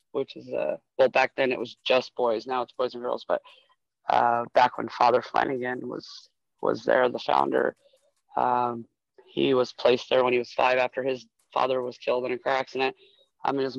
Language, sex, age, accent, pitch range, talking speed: English, male, 20-39, American, 125-140 Hz, 205 wpm